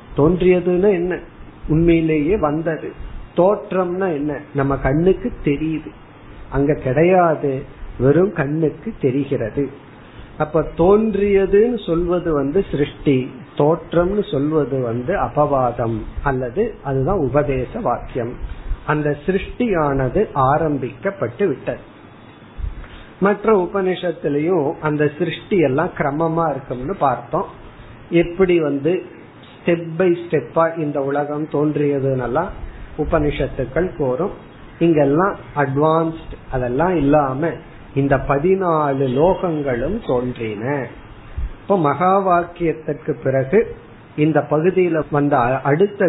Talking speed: 65 wpm